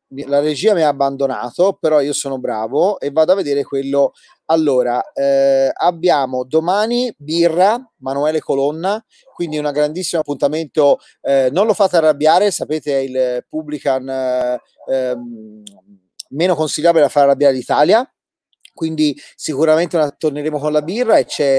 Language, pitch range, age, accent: Italian, 135-170 Hz, 30-49, native